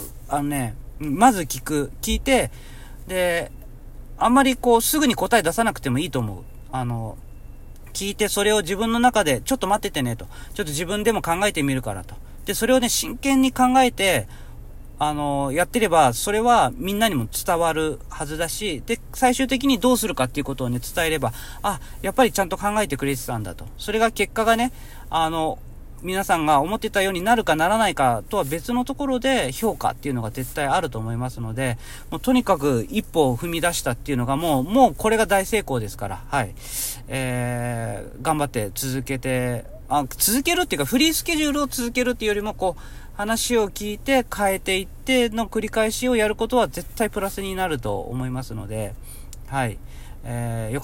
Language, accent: Japanese, native